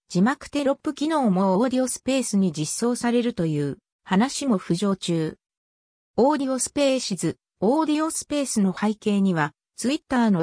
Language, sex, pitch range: Japanese, female, 180-265 Hz